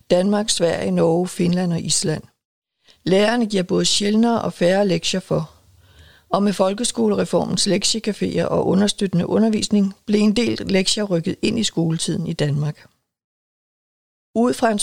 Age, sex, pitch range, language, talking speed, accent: 60-79, female, 165-205 Hz, Danish, 140 wpm, native